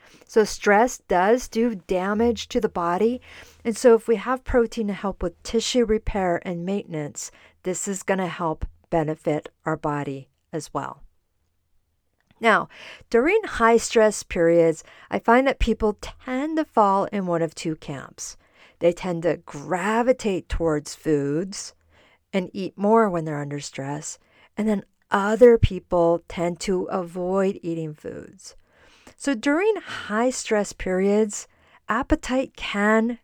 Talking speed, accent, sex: 135 wpm, American, female